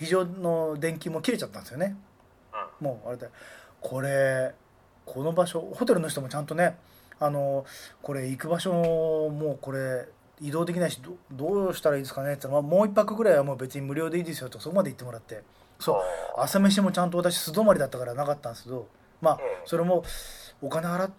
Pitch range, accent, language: 125-170 Hz, native, Japanese